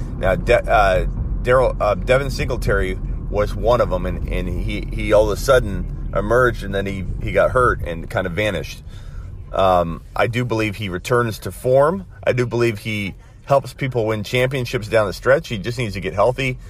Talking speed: 200 wpm